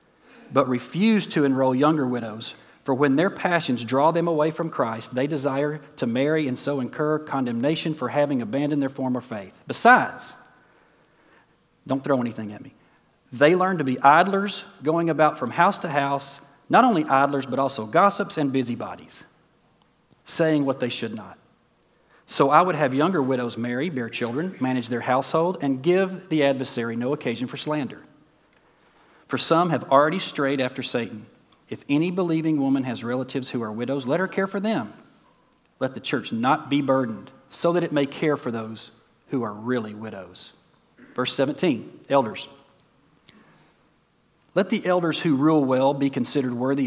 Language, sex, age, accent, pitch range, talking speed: English, male, 40-59, American, 125-155 Hz, 165 wpm